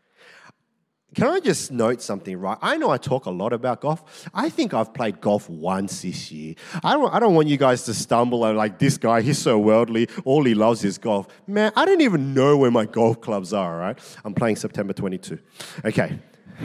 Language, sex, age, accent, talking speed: English, male, 30-49, Australian, 215 wpm